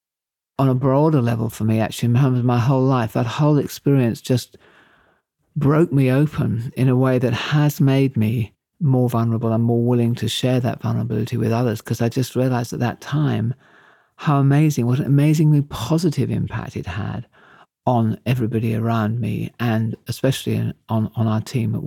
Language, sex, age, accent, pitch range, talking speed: English, male, 50-69, British, 115-150 Hz, 170 wpm